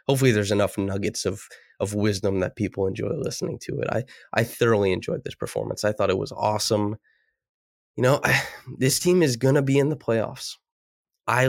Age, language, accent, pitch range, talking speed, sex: 20-39, English, American, 105-135 Hz, 195 wpm, male